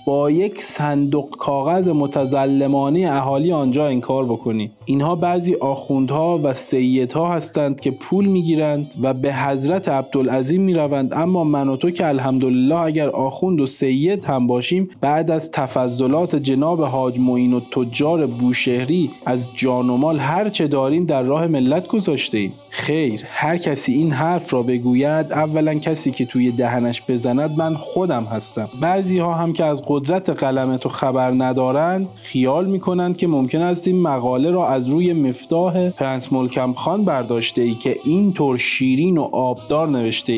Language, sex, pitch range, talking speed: Persian, male, 130-165 Hz, 155 wpm